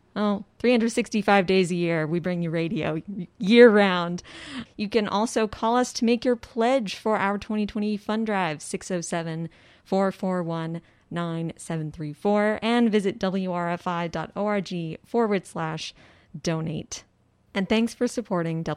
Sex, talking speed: female, 115 wpm